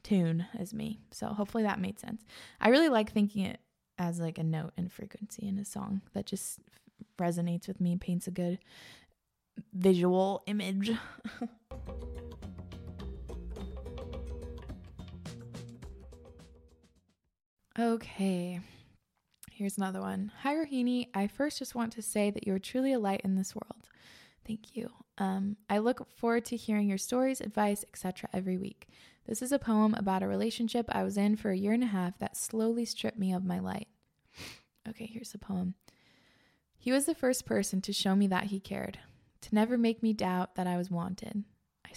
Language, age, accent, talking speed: English, 20-39, American, 165 wpm